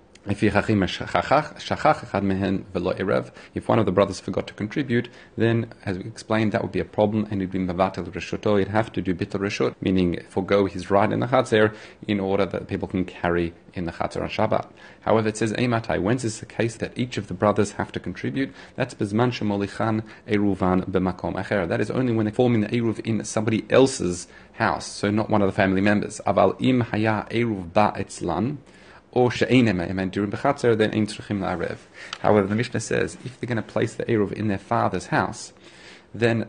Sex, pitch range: male, 95-115 Hz